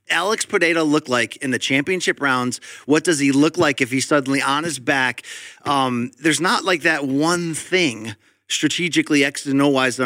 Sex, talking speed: male, 190 wpm